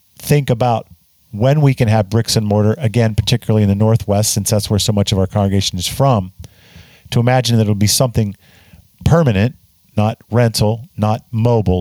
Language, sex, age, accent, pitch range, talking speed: English, male, 50-69, American, 105-130 Hz, 180 wpm